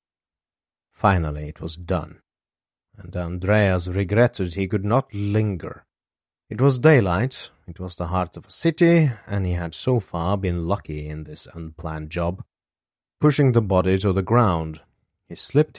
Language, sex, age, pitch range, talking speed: English, male, 30-49, 85-110 Hz, 150 wpm